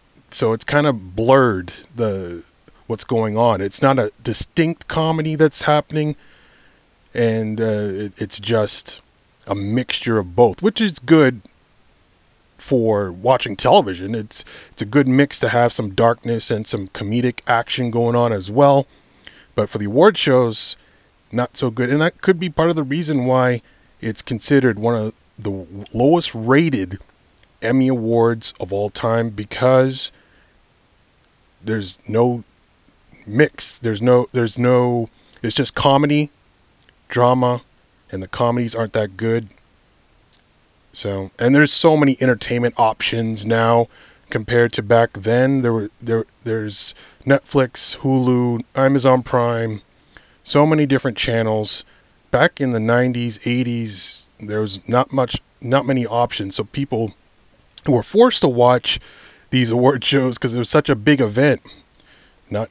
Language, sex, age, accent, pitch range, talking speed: English, male, 30-49, American, 105-130 Hz, 140 wpm